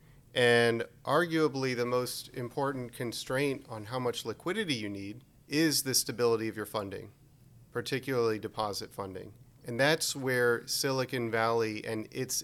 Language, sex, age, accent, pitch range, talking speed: English, male, 40-59, American, 110-130 Hz, 135 wpm